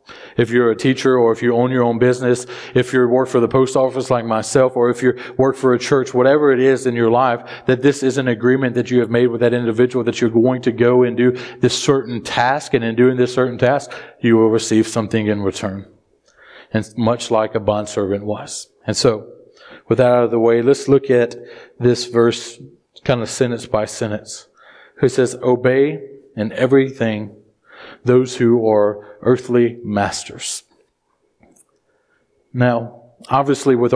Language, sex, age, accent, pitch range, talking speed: English, male, 40-59, American, 120-130 Hz, 185 wpm